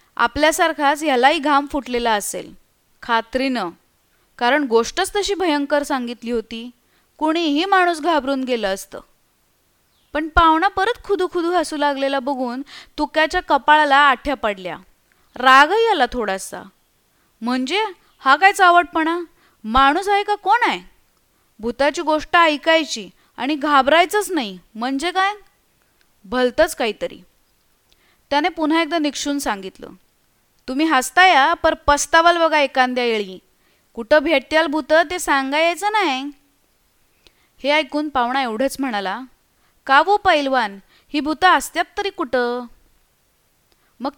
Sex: female